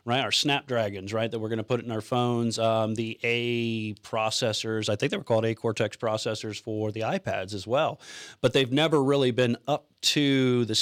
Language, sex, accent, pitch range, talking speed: English, male, American, 110-135 Hz, 205 wpm